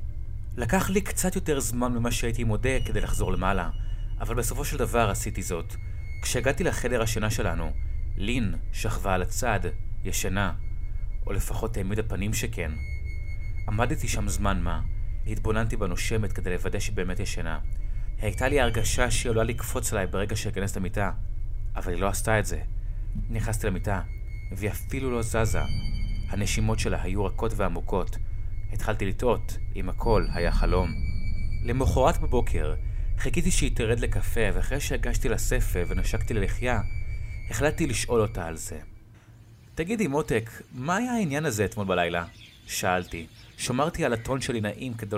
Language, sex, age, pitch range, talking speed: Hebrew, male, 30-49, 95-115 Hz, 140 wpm